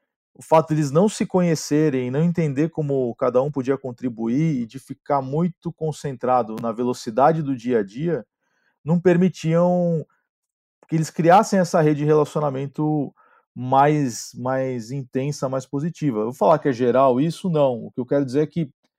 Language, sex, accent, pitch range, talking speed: Portuguese, male, Brazilian, 125-165 Hz, 170 wpm